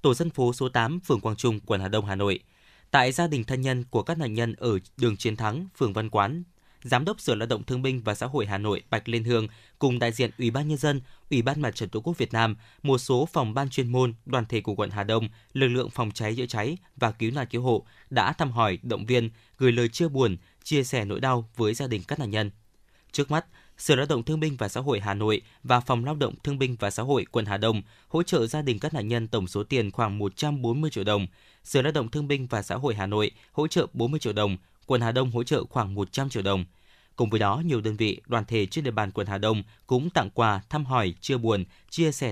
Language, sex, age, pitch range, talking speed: Vietnamese, male, 20-39, 110-135 Hz, 270 wpm